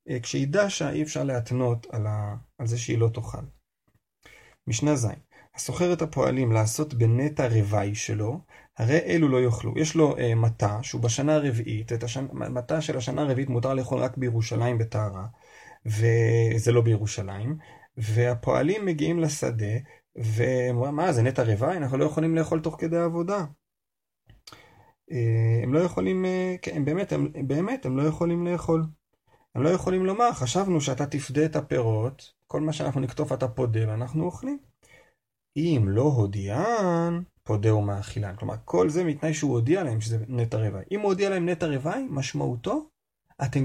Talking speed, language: 155 wpm, Hebrew